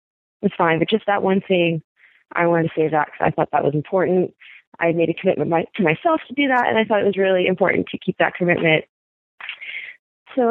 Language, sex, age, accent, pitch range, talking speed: English, female, 20-39, American, 155-195 Hz, 230 wpm